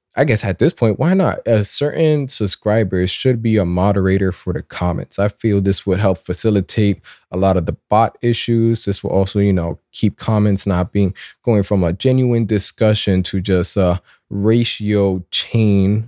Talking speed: 180 wpm